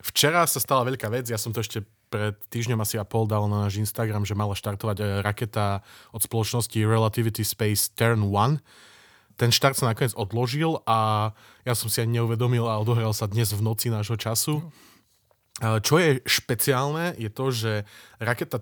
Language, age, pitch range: Slovak, 20-39, 105-125 Hz